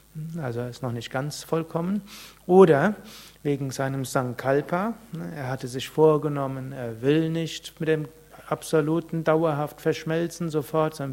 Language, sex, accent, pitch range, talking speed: German, male, German, 135-160 Hz, 130 wpm